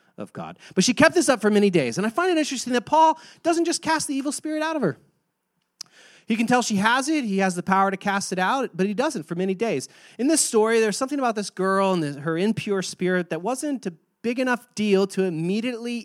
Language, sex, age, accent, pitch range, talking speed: English, male, 30-49, American, 170-245 Hz, 245 wpm